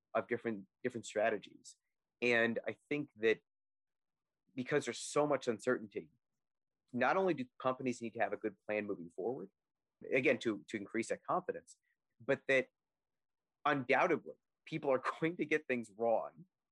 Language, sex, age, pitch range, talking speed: English, male, 30-49, 110-135 Hz, 145 wpm